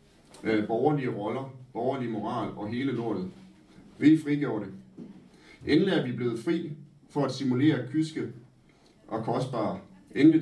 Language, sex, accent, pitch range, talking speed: Danish, male, native, 110-145 Hz, 125 wpm